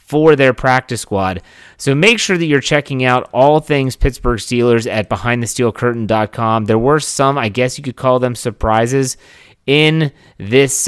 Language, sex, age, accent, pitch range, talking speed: English, male, 30-49, American, 105-135 Hz, 160 wpm